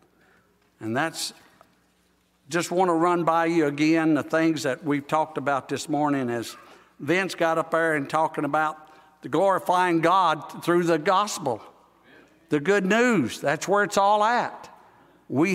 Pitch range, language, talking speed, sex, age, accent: 135-170 Hz, English, 155 wpm, male, 60-79, American